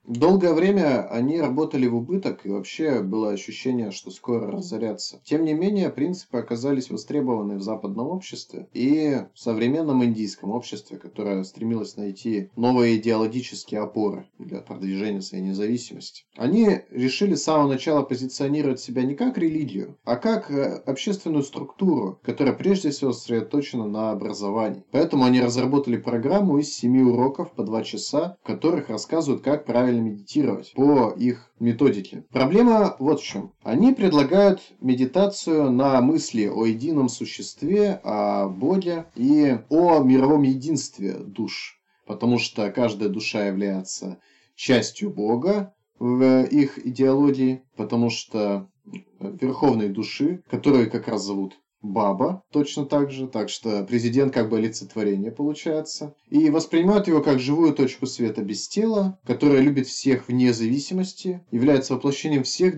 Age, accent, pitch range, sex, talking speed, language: 20-39, native, 115-155 Hz, male, 135 wpm, Russian